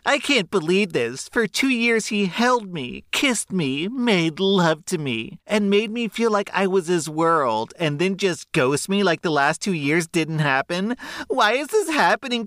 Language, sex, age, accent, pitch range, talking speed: English, male, 40-59, American, 100-165 Hz, 195 wpm